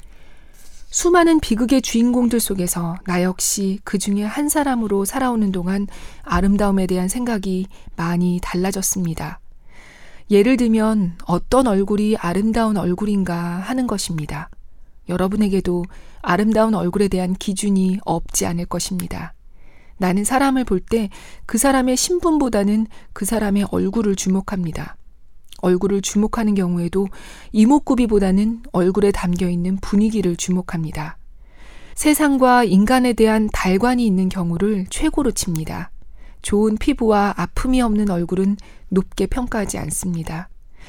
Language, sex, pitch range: Korean, female, 180-225 Hz